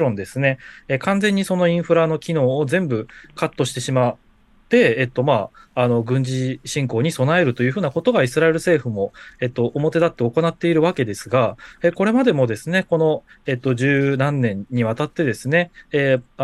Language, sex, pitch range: Japanese, male, 120-165 Hz